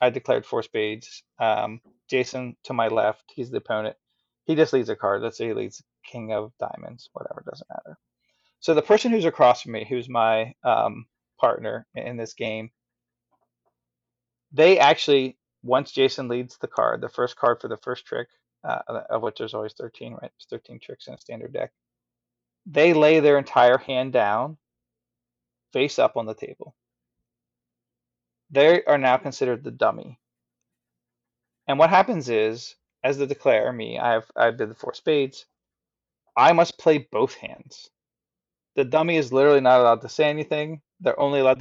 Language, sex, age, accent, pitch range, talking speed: English, male, 20-39, American, 110-145 Hz, 170 wpm